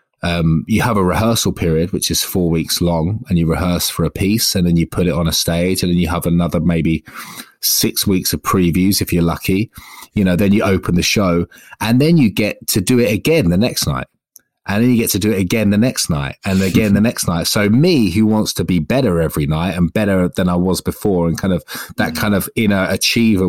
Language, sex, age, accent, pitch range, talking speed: English, male, 30-49, British, 80-100 Hz, 245 wpm